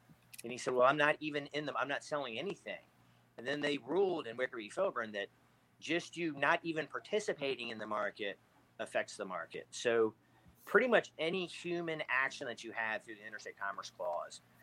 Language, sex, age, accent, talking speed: English, male, 40-59, American, 195 wpm